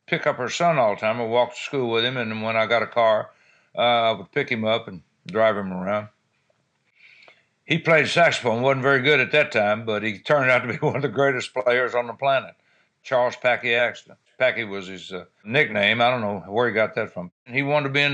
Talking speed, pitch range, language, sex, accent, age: 240 wpm, 115-145 Hz, English, male, American, 60-79